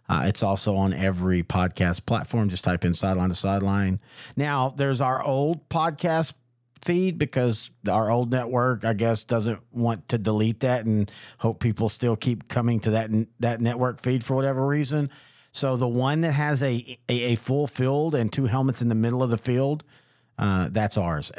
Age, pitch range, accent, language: 50-69, 115-135 Hz, American, English